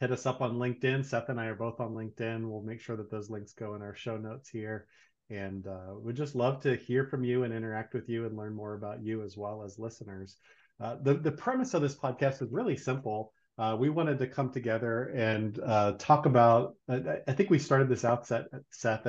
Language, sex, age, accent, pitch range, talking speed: English, male, 30-49, American, 110-135 Hz, 235 wpm